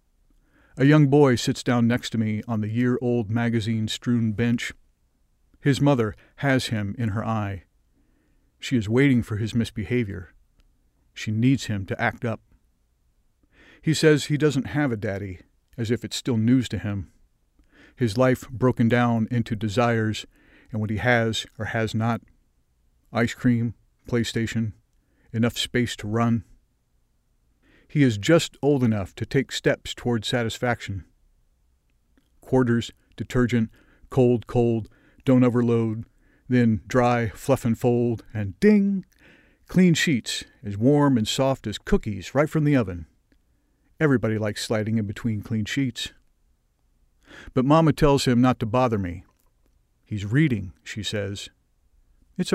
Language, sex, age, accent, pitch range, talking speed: English, male, 50-69, American, 100-125 Hz, 140 wpm